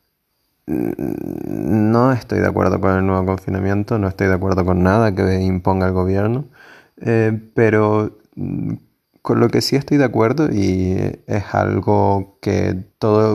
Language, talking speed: Spanish, 145 wpm